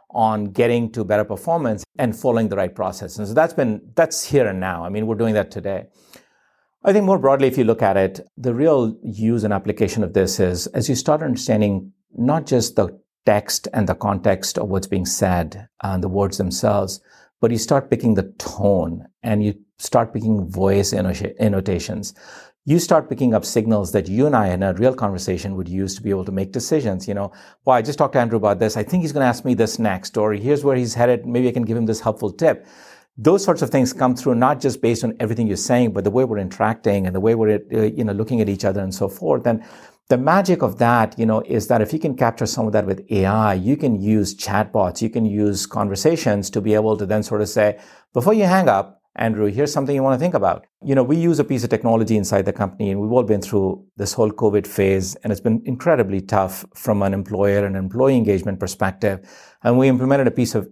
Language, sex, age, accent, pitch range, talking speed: English, male, 50-69, Indian, 100-125 Hz, 235 wpm